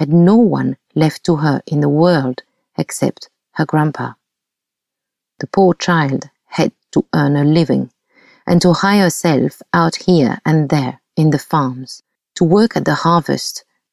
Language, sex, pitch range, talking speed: English, female, 140-170 Hz, 155 wpm